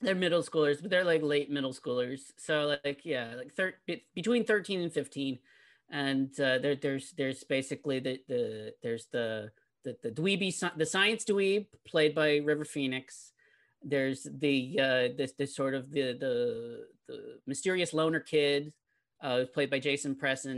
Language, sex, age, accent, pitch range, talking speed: English, male, 40-59, American, 135-155 Hz, 165 wpm